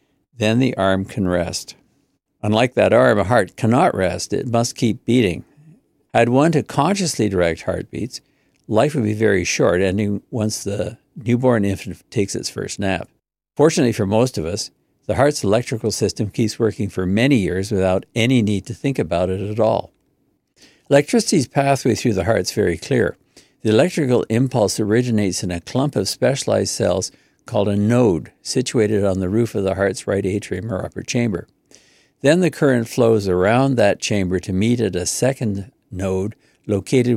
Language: English